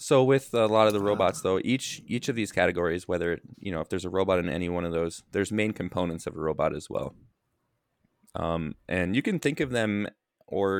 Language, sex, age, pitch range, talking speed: English, male, 20-39, 85-105 Hz, 230 wpm